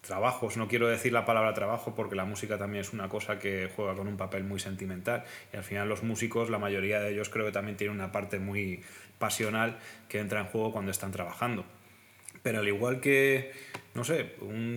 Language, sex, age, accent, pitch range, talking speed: Spanish, male, 20-39, Spanish, 105-125 Hz, 210 wpm